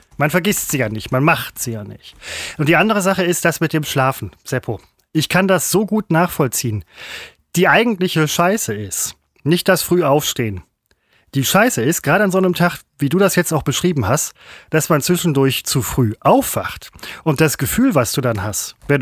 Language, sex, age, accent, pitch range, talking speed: German, male, 30-49, German, 125-175 Hz, 195 wpm